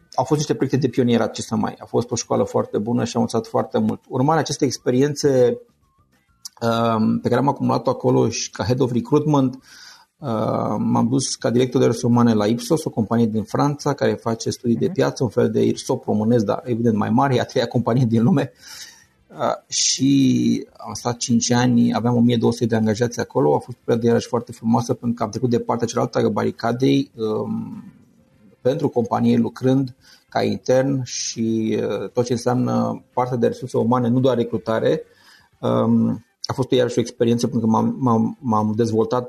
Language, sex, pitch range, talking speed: Romanian, male, 115-130 Hz, 180 wpm